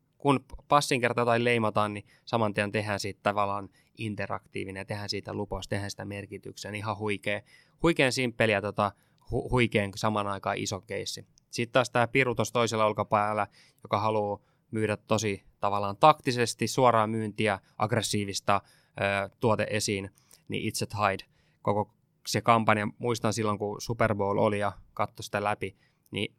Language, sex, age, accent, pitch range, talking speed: Finnish, male, 20-39, native, 105-120 Hz, 145 wpm